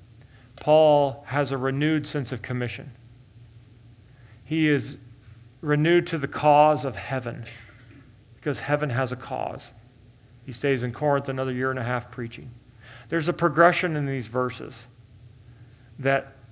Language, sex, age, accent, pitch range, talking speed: English, male, 40-59, American, 120-155 Hz, 135 wpm